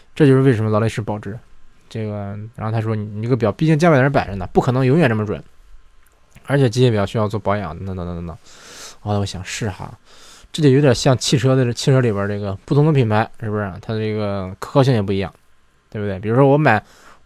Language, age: Chinese, 20-39